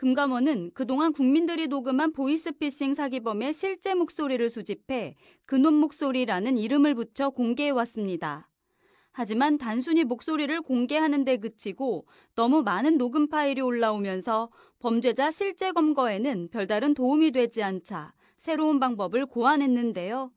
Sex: female